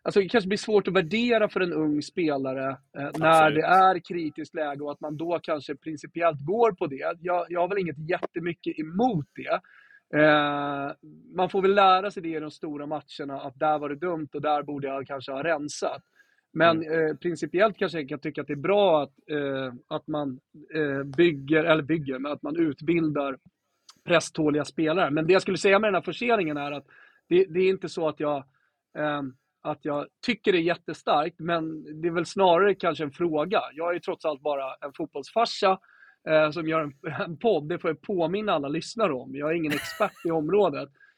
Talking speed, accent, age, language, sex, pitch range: 205 wpm, native, 30-49, Swedish, male, 150-195 Hz